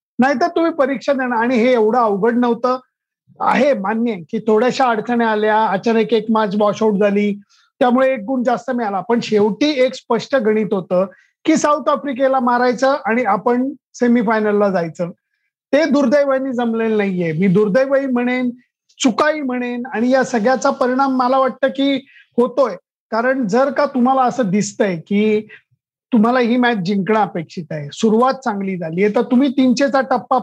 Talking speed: 155 wpm